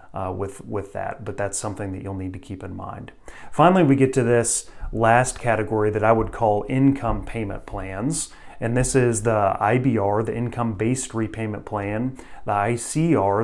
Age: 30-49